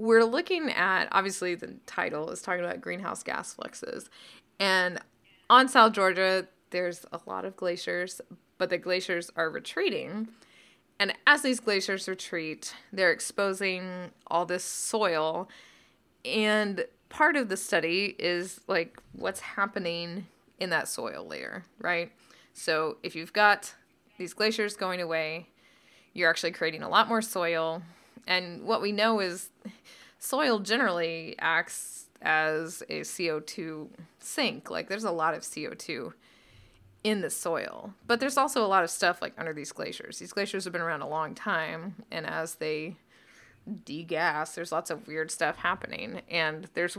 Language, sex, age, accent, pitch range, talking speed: English, female, 20-39, American, 170-215 Hz, 150 wpm